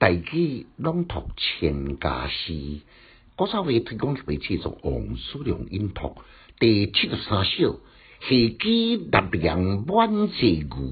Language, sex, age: Chinese, male, 60-79